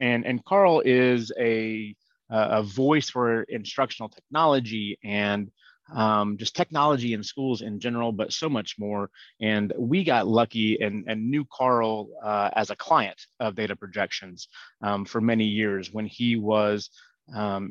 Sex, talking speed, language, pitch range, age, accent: male, 155 wpm, English, 105-125 Hz, 30-49, American